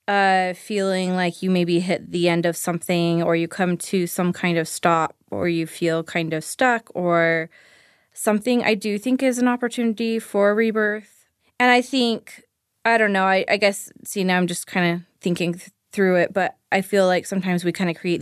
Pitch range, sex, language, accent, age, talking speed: 175-215 Hz, female, English, American, 20-39, 200 wpm